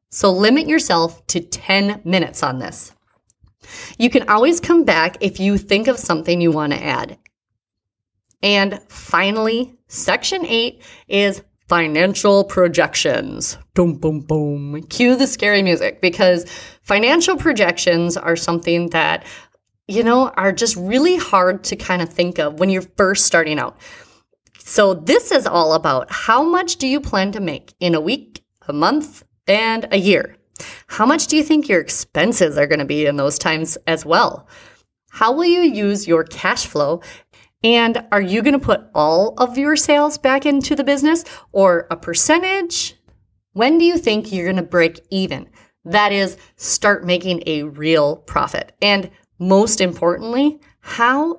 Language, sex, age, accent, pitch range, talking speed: English, female, 30-49, American, 170-270 Hz, 160 wpm